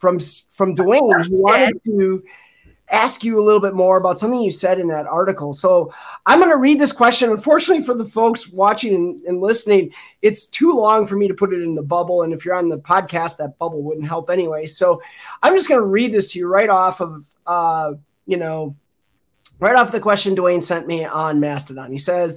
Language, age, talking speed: English, 30-49, 220 wpm